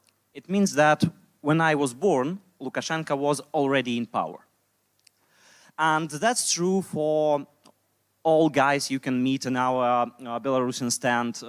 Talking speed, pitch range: 130 wpm, 120-160 Hz